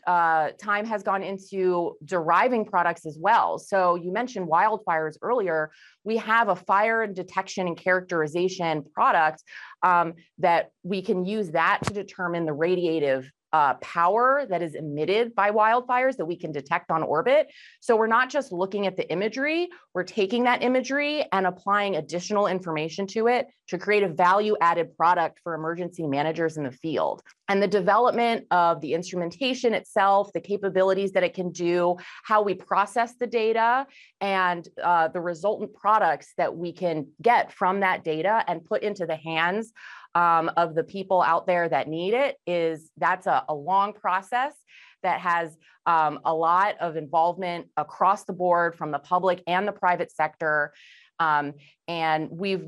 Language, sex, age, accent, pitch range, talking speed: English, female, 30-49, American, 165-210 Hz, 165 wpm